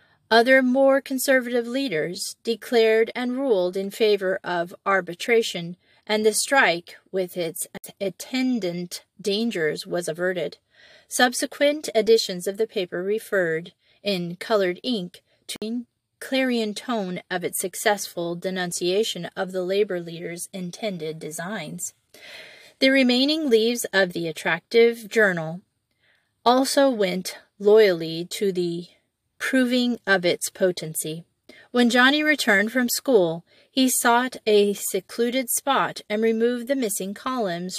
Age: 30-49